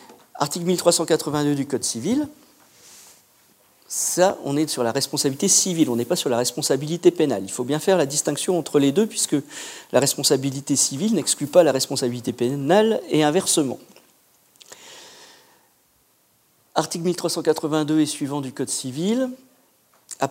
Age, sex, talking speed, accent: 50-69, male, 140 wpm, French